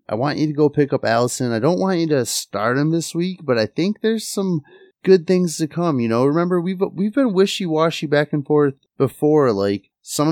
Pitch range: 95-135 Hz